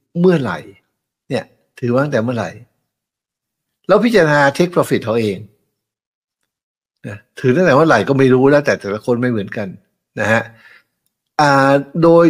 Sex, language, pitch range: male, Thai, 115-150 Hz